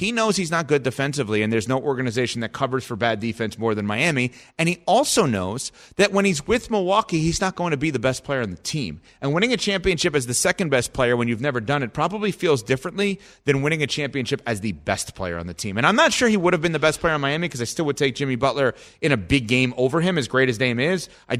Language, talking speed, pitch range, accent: English, 275 wpm, 120-170 Hz, American